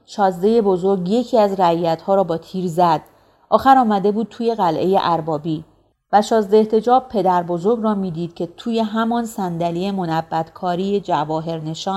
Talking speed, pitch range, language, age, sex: 140 wpm, 175-220 Hz, Persian, 40-59, female